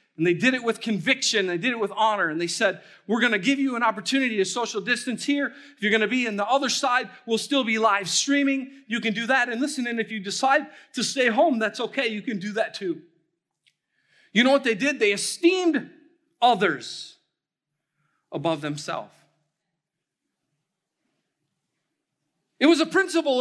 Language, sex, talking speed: English, male, 185 wpm